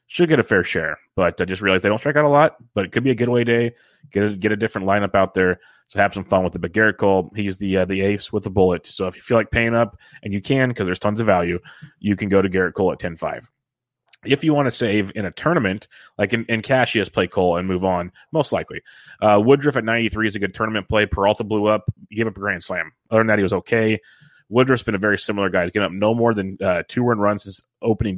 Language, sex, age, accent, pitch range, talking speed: English, male, 30-49, American, 95-110 Hz, 280 wpm